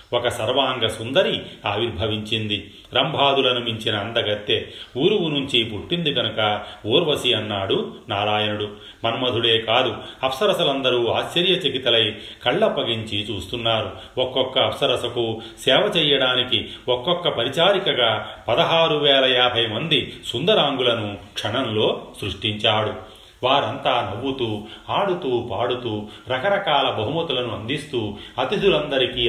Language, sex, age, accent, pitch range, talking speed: Telugu, male, 30-49, native, 105-130 Hz, 80 wpm